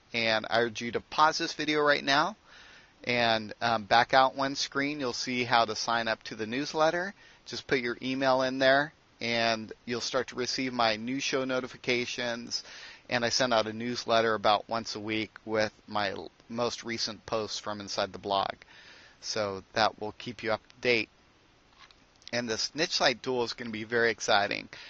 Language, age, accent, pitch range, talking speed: English, 30-49, American, 110-130 Hz, 190 wpm